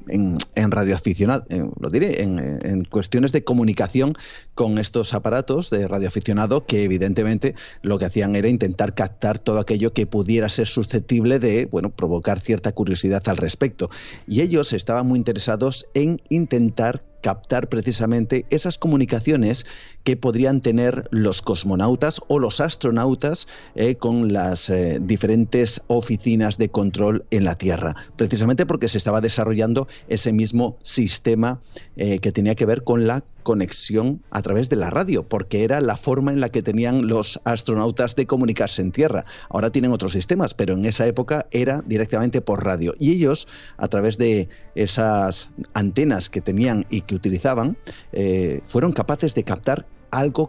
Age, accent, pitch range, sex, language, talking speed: 40-59, Spanish, 105-125 Hz, male, Spanish, 155 wpm